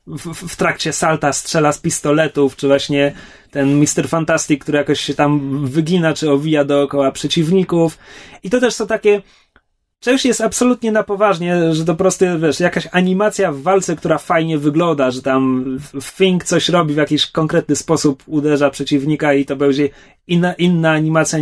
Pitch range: 145-190 Hz